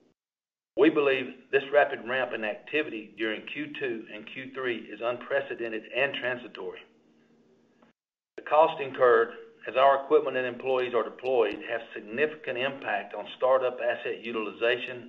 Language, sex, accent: English, male, American